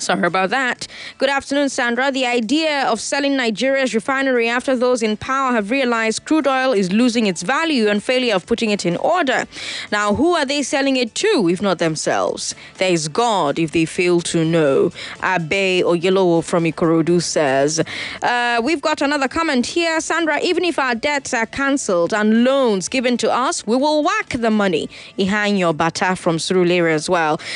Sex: female